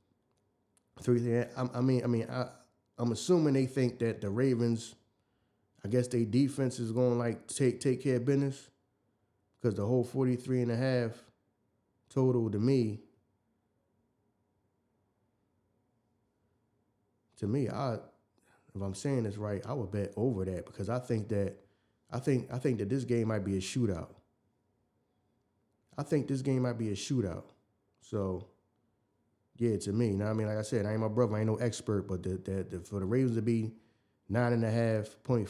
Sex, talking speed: male, 175 wpm